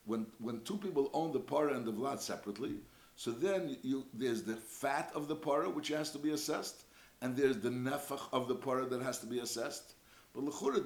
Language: English